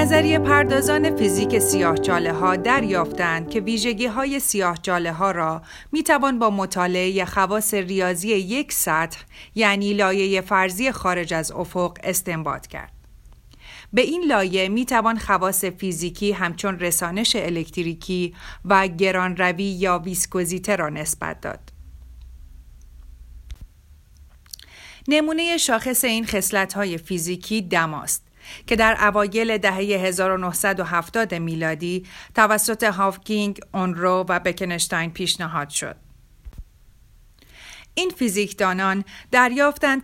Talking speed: 100 wpm